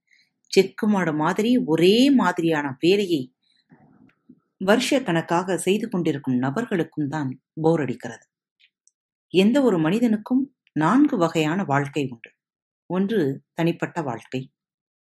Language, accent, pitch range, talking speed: Tamil, native, 150-215 Hz, 90 wpm